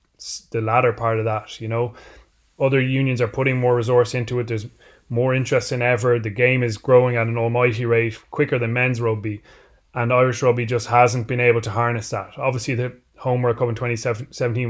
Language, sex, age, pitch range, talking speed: English, male, 20-39, 110-125 Hz, 195 wpm